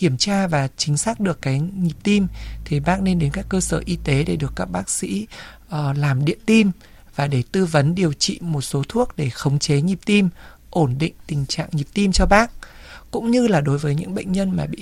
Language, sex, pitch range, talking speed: Vietnamese, male, 150-200 Hz, 235 wpm